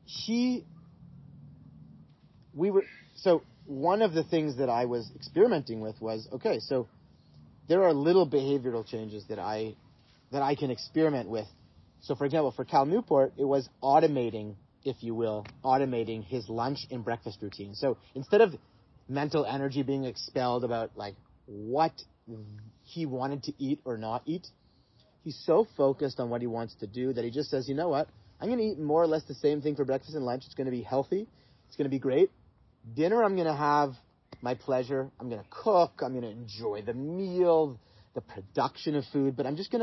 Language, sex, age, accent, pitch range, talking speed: English, male, 30-49, American, 120-165 Hz, 195 wpm